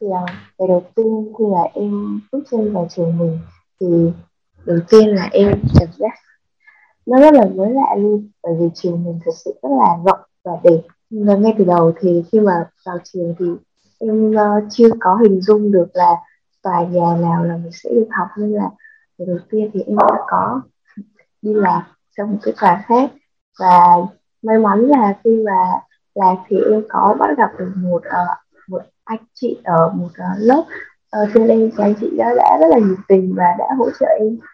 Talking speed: 195 wpm